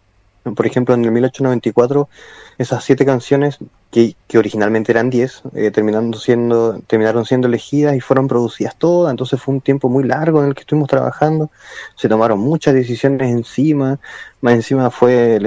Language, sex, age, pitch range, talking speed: Spanish, male, 20-39, 115-145 Hz, 165 wpm